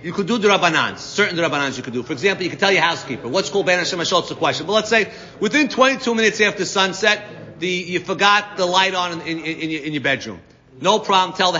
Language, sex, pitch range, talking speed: English, male, 165-220 Hz, 260 wpm